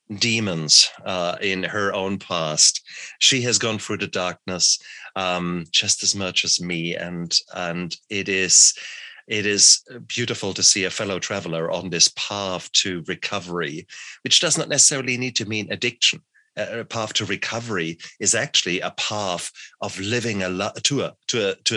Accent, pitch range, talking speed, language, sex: German, 95-120 Hz, 160 wpm, English, male